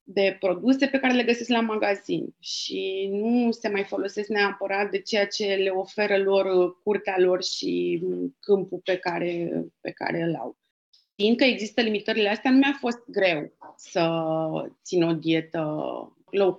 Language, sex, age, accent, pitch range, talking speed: Romanian, female, 30-49, native, 185-240 Hz, 155 wpm